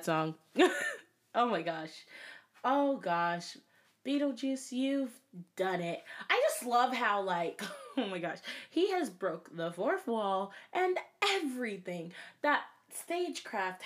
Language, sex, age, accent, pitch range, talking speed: English, female, 20-39, American, 180-290 Hz, 120 wpm